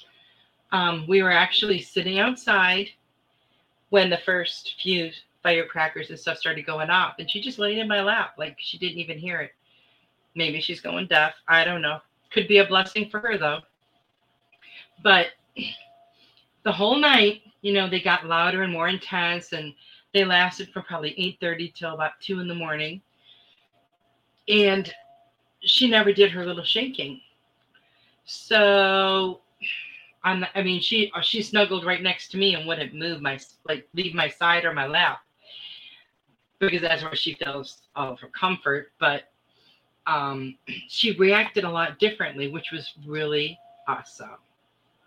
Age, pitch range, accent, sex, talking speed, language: 40-59, 155-200 Hz, American, female, 155 wpm, English